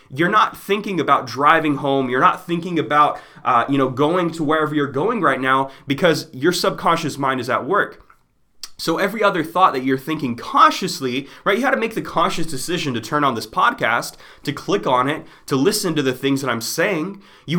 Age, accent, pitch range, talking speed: 20-39, American, 135-175 Hz, 210 wpm